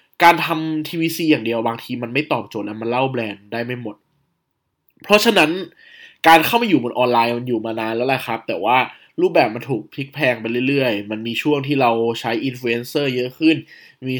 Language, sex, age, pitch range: Thai, male, 20-39, 125-175 Hz